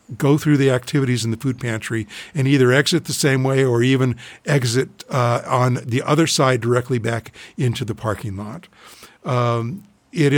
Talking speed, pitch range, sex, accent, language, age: 175 wpm, 115-140 Hz, male, American, English, 50-69